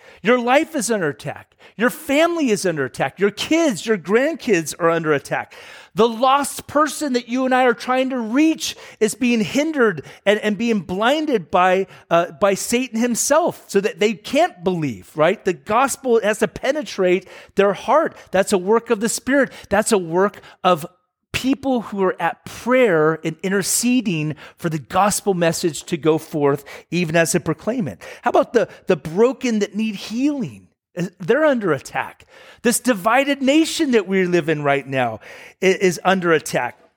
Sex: male